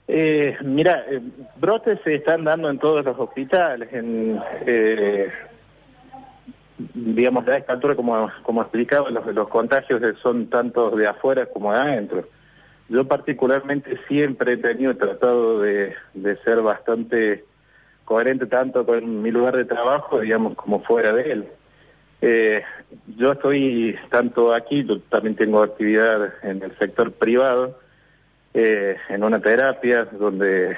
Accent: Argentinian